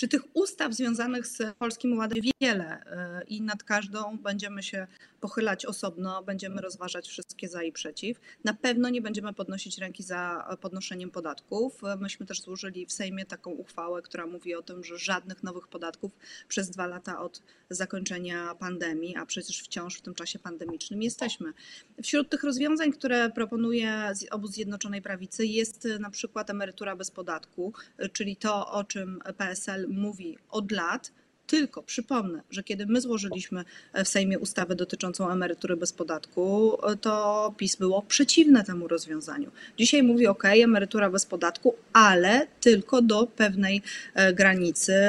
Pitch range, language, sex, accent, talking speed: 180-220 Hz, Polish, female, native, 150 wpm